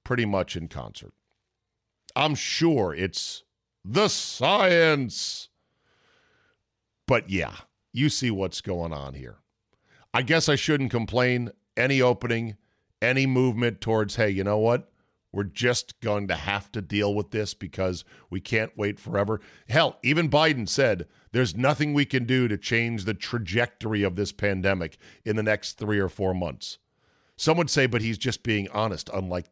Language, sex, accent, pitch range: English, male, American, 100-130 Hz